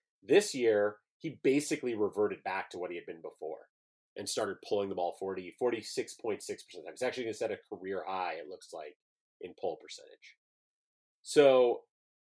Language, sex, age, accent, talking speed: English, male, 30-49, American, 185 wpm